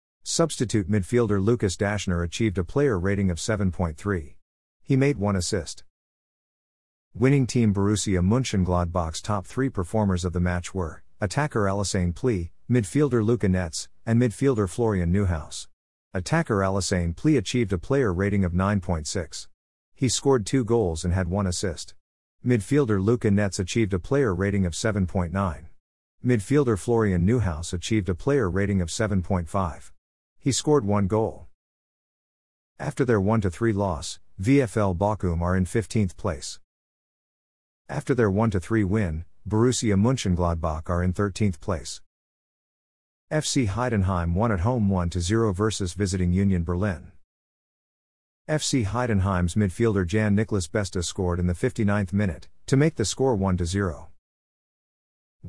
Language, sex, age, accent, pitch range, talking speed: English, male, 50-69, American, 90-115 Hz, 130 wpm